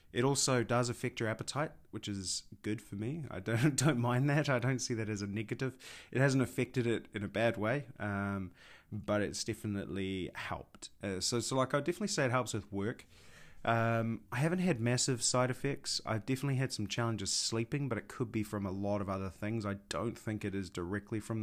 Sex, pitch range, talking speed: male, 95-120 Hz, 215 wpm